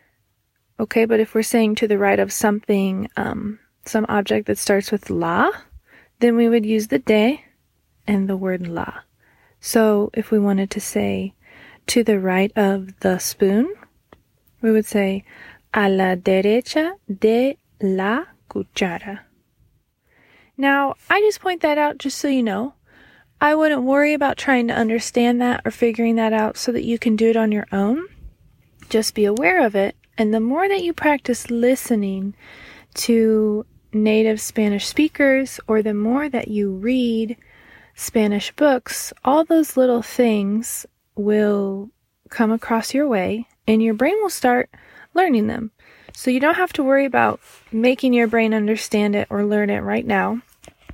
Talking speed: 160 wpm